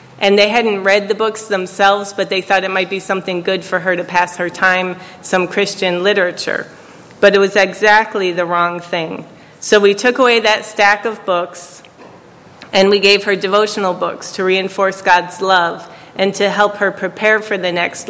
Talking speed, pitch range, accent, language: 190 wpm, 180-205 Hz, American, English